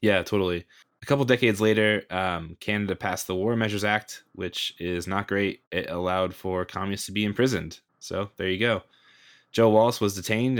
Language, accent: English, American